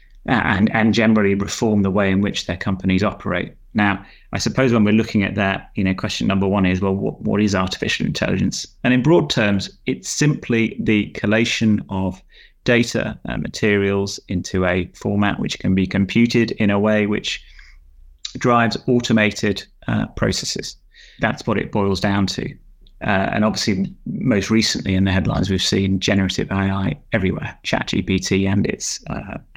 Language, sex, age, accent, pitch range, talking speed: English, male, 30-49, British, 95-115 Hz, 165 wpm